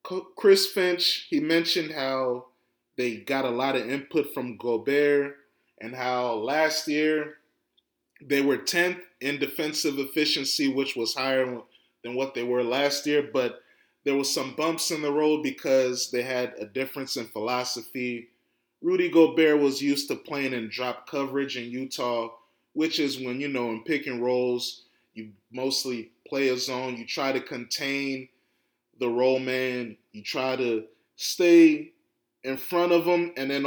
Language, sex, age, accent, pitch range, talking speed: English, male, 20-39, American, 120-140 Hz, 155 wpm